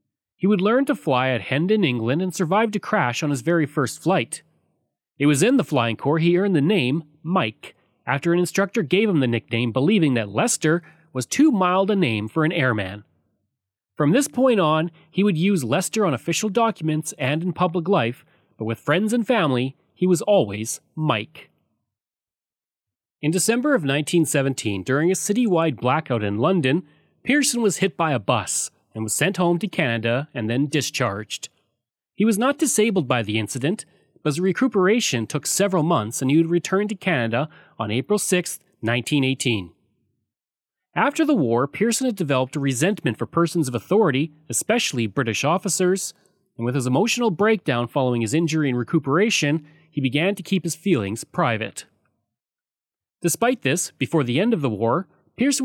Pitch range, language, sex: 125-190 Hz, English, male